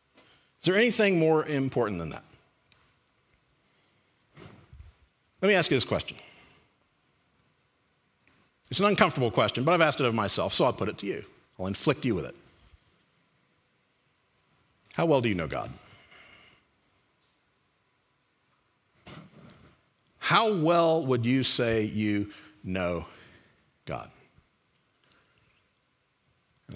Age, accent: 50-69, American